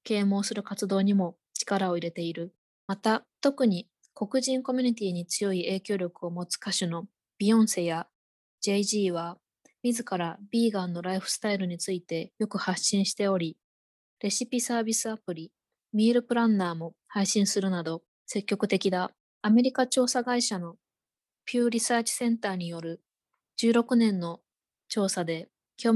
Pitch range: 180-235 Hz